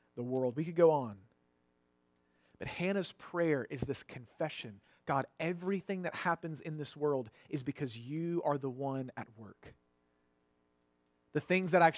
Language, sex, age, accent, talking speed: English, male, 30-49, American, 155 wpm